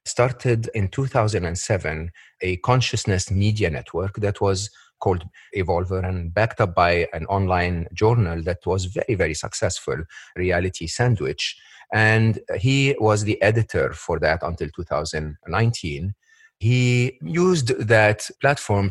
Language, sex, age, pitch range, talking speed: English, male, 40-59, 90-120 Hz, 120 wpm